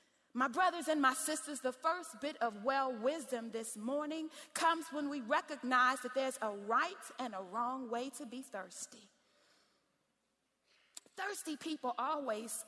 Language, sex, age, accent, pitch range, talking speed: English, female, 30-49, American, 245-305 Hz, 145 wpm